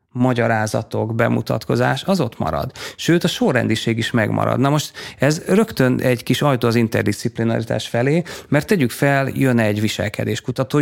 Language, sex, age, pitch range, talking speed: Hungarian, male, 30-49, 115-135 Hz, 145 wpm